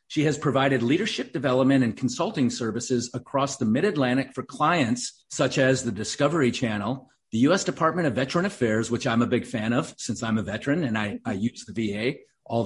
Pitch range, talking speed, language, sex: 125-155 Hz, 195 wpm, English, male